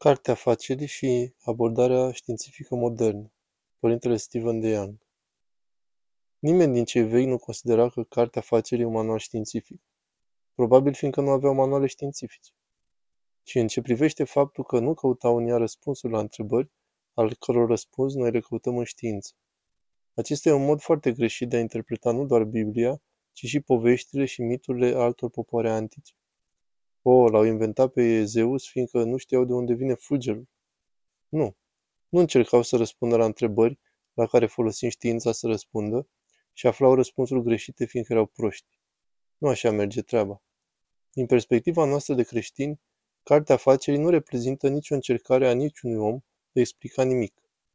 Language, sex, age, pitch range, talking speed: Romanian, male, 20-39, 115-130 Hz, 155 wpm